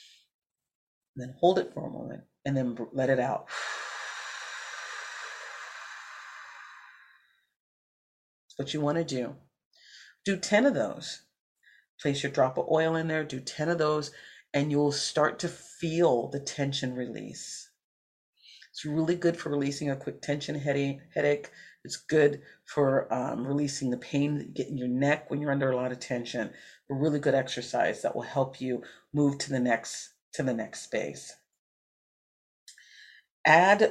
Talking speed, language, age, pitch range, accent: 155 wpm, English, 40-59, 130-150 Hz, American